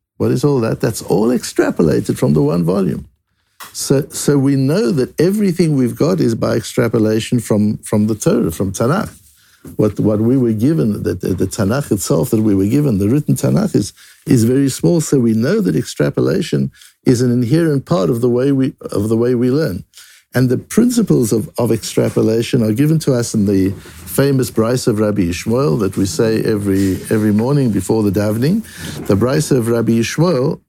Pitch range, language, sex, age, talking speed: 105-135 Hz, English, male, 60-79, 190 wpm